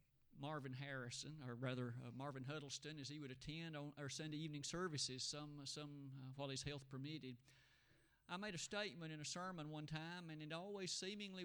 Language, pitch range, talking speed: English, 135-185 Hz, 190 wpm